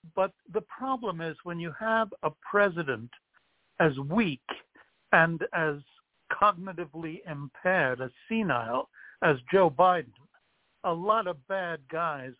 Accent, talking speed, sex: American, 120 wpm, male